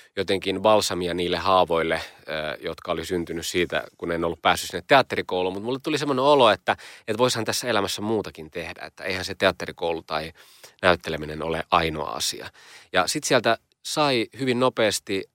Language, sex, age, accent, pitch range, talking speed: Finnish, male, 30-49, native, 85-105 Hz, 160 wpm